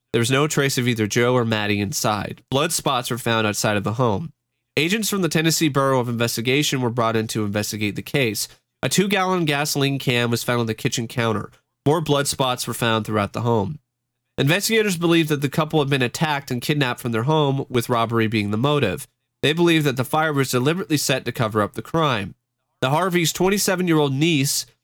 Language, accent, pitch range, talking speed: English, American, 120-150 Hz, 205 wpm